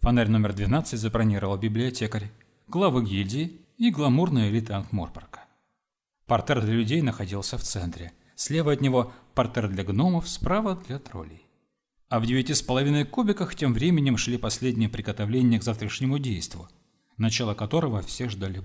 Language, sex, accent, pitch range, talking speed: Russian, male, native, 105-145 Hz, 140 wpm